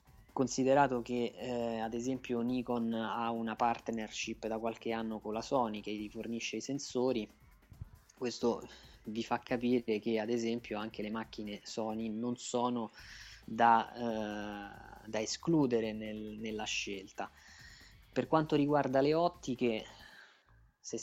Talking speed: 125 wpm